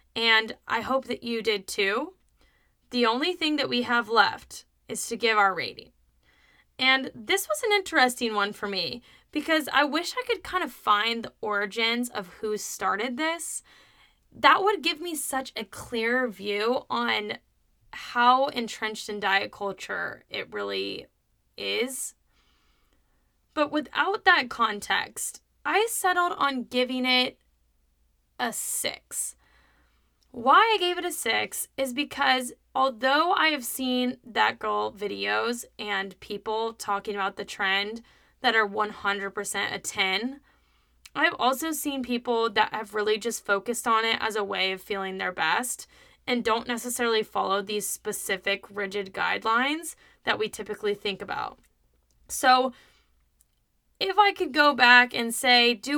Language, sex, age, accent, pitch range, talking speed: English, female, 20-39, American, 205-265 Hz, 145 wpm